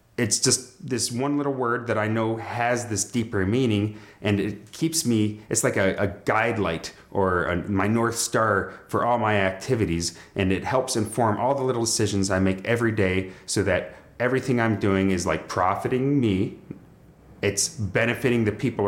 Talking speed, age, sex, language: 180 wpm, 30-49, male, English